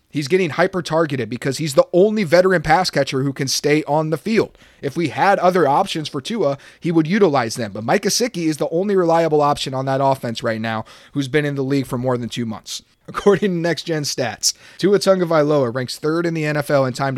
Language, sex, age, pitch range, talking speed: English, male, 30-49, 125-155 Hz, 225 wpm